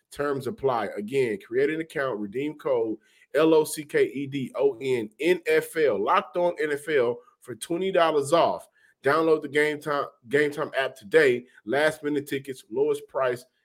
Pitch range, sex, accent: 130-185 Hz, male, American